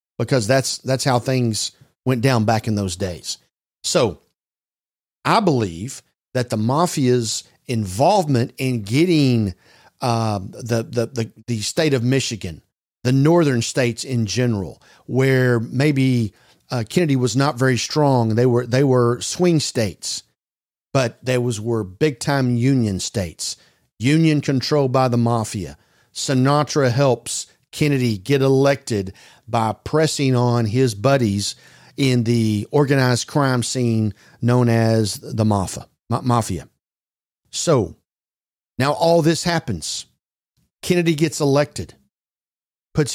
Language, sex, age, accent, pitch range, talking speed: English, male, 50-69, American, 115-140 Hz, 125 wpm